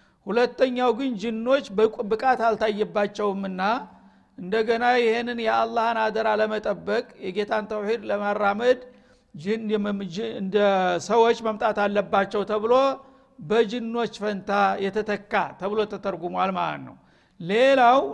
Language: Amharic